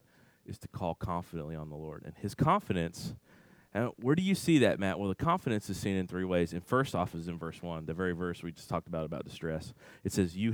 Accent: American